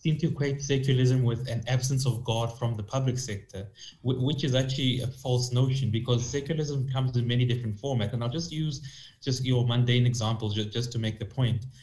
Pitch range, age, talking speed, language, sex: 120-135 Hz, 20-39, 205 wpm, English, male